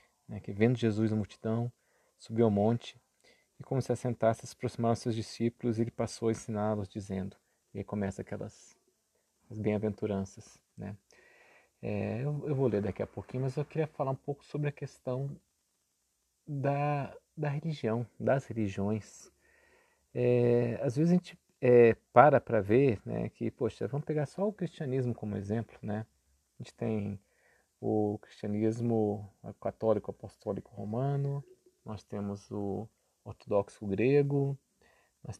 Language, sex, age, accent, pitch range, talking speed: Portuguese, male, 40-59, Brazilian, 105-125 Hz, 150 wpm